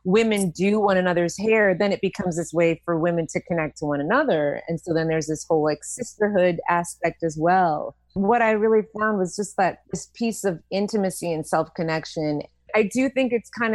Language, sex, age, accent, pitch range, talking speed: English, female, 30-49, American, 165-205 Hz, 205 wpm